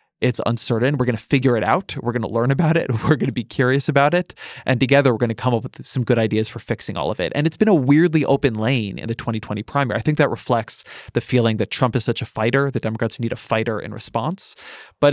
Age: 20-39